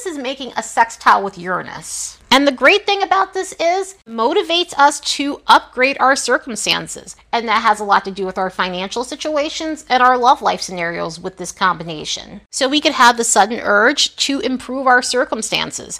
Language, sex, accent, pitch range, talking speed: English, female, American, 200-280 Hz, 190 wpm